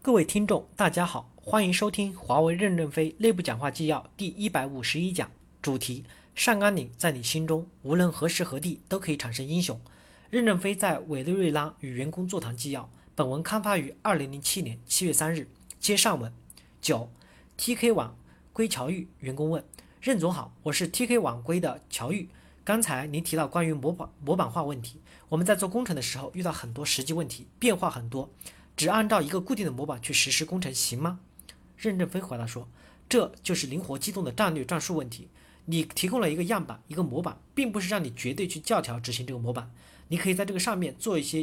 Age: 40-59